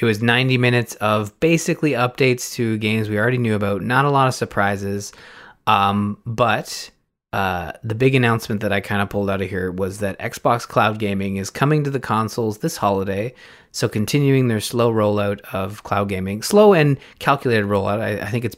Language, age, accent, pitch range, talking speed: English, 20-39, American, 100-125 Hz, 195 wpm